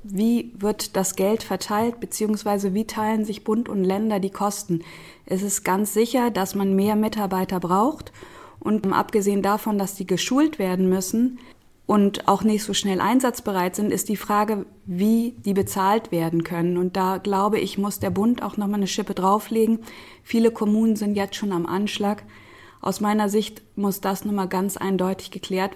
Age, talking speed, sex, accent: 20-39, 170 wpm, female, German